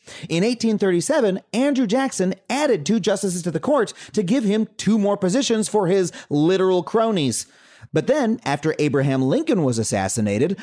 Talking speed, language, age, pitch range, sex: 155 wpm, English, 30-49, 150-220 Hz, male